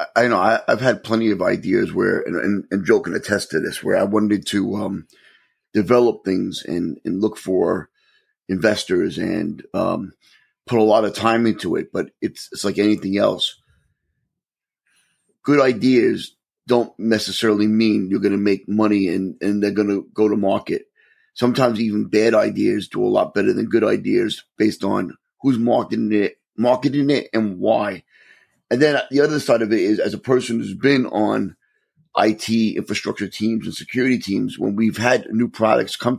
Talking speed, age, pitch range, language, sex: 175 wpm, 30-49, 105-130 Hz, English, male